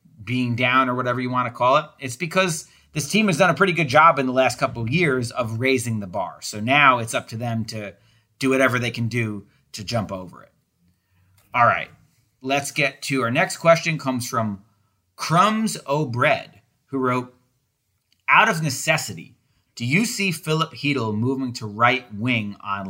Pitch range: 120-145 Hz